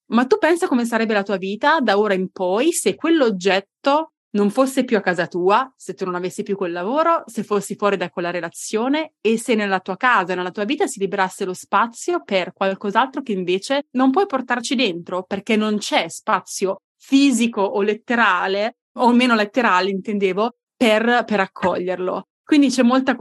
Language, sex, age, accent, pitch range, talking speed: Italian, female, 20-39, native, 190-235 Hz, 180 wpm